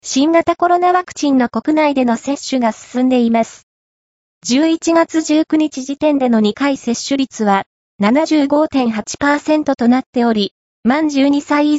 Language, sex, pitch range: Japanese, female, 235-300 Hz